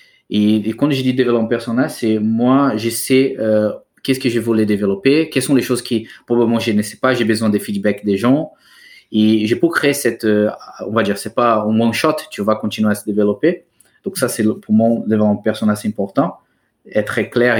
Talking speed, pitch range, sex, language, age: 215 wpm, 105-125 Hz, male, French, 20-39